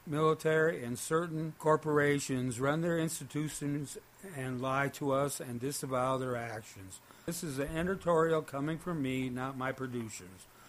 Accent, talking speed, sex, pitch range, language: American, 140 wpm, male, 130-155 Hz, English